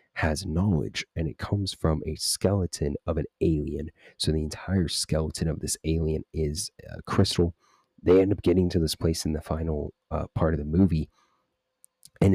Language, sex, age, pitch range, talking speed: English, male, 30-49, 75-85 Hz, 180 wpm